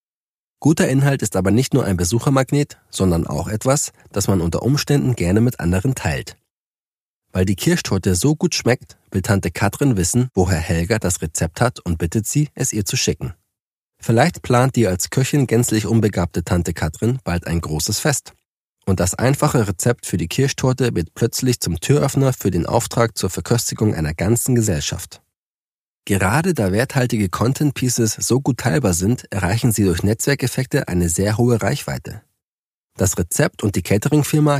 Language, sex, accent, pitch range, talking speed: German, male, German, 95-130 Hz, 165 wpm